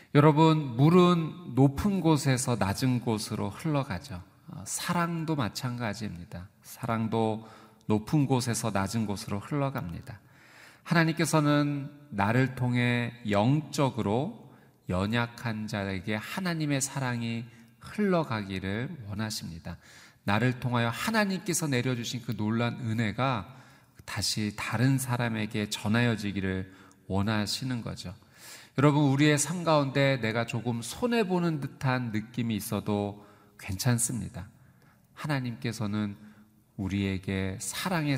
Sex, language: male, Korean